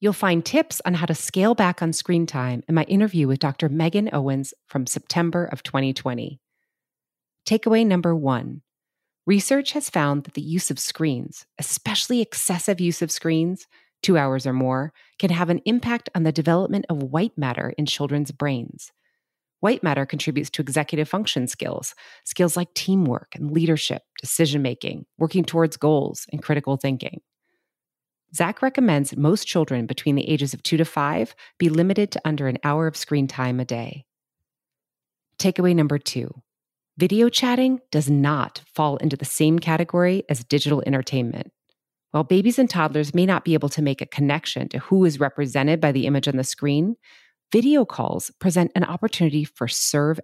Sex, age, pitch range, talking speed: female, 30-49, 145-180 Hz, 165 wpm